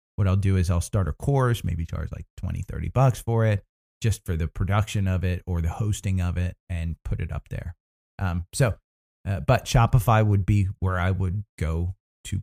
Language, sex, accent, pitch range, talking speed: English, male, American, 95-120 Hz, 210 wpm